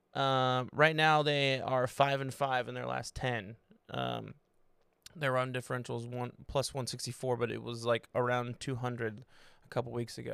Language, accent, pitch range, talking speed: English, American, 125-145 Hz, 175 wpm